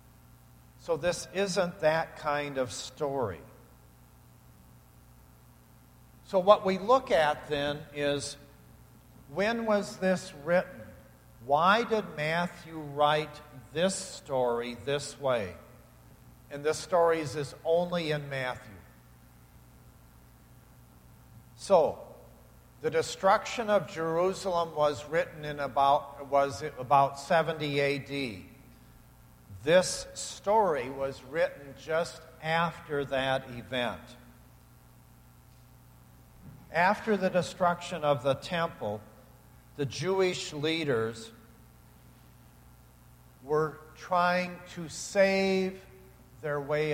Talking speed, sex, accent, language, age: 85 wpm, male, American, English, 50-69